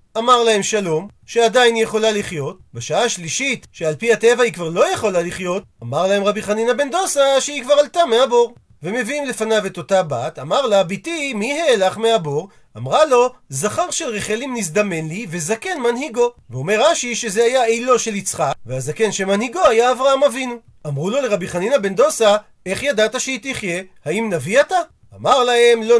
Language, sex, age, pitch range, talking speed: Hebrew, male, 40-59, 190-250 Hz, 175 wpm